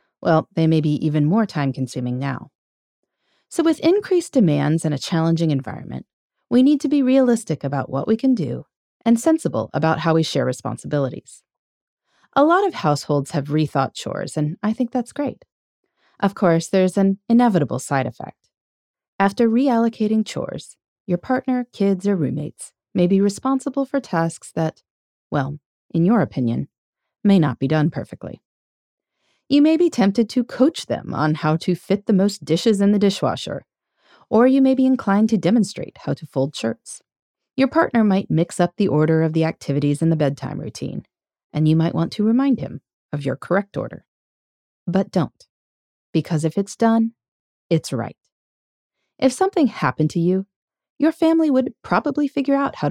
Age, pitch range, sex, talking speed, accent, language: 30-49, 155-245 Hz, female, 170 wpm, American, English